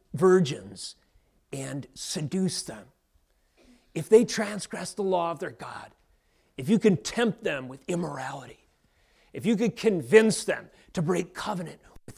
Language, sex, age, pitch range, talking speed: English, male, 30-49, 135-185 Hz, 140 wpm